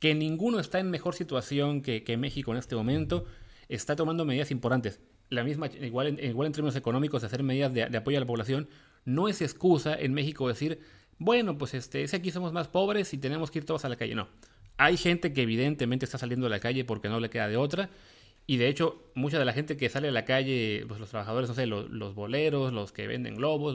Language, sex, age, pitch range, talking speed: English, male, 30-49, 120-155 Hz, 245 wpm